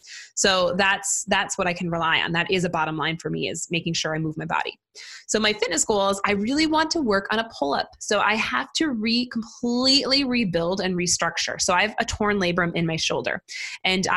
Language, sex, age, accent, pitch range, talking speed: English, female, 20-39, American, 175-225 Hz, 225 wpm